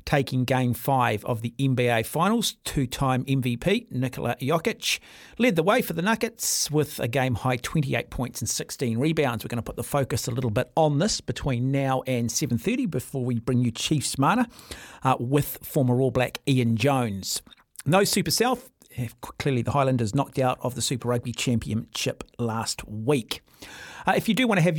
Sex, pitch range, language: male, 130-175 Hz, English